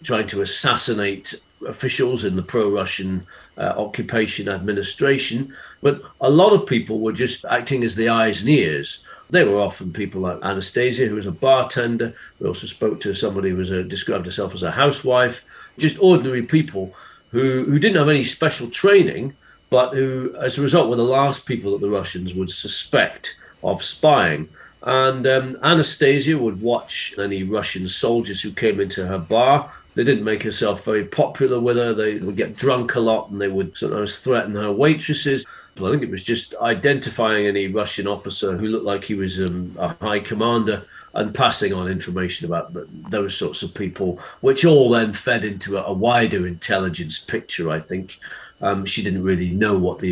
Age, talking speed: 40-59, 185 wpm